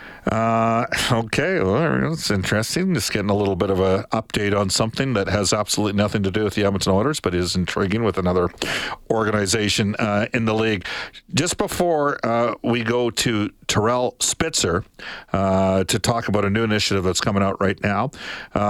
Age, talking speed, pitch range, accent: 50-69, 180 wpm, 105-140 Hz, American